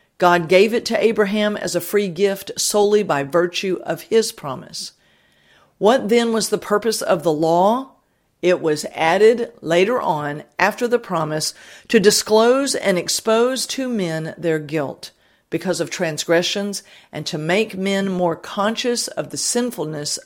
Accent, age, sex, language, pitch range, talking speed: American, 50-69, female, English, 165-210 Hz, 150 wpm